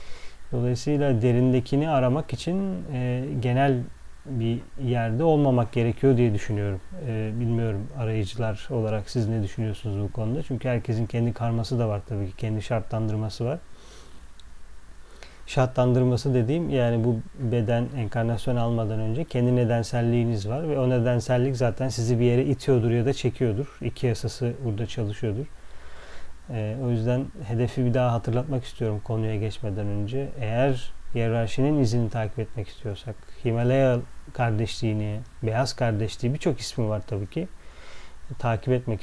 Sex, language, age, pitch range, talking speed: male, Turkish, 40-59, 110-130 Hz, 130 wpm